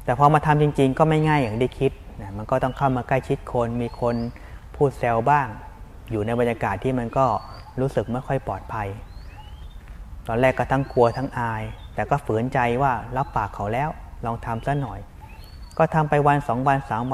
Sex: male